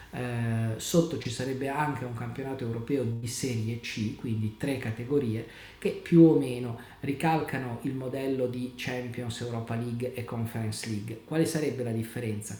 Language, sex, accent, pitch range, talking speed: Italian, male, native, 115-135 Hz, 150 wpm